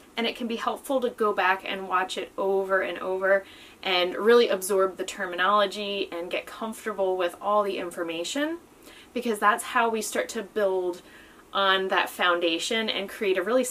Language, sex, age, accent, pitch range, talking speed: English, female, 20-39, American, 180-225 Hz, 175 wpm